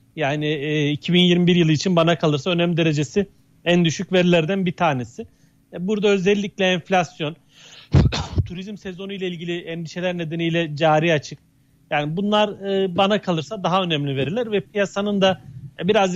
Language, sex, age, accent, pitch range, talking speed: Turkish, male, 40-59, native, 150-185 Hz, 135 wpm